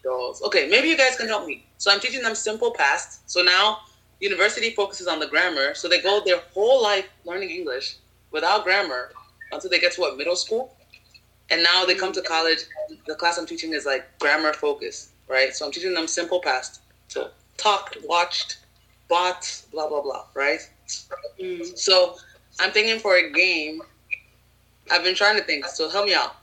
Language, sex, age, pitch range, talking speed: English, female, 20-39, 150-205 Hz, 180 wpm